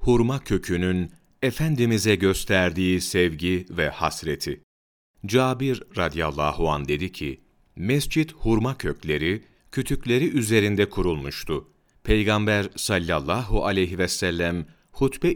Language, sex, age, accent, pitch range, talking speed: Turkish, male, 40-59, native, 85-120 Hz, 95 wpm